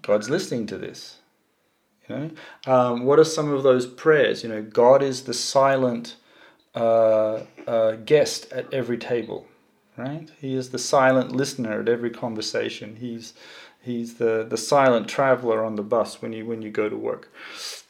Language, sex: English, male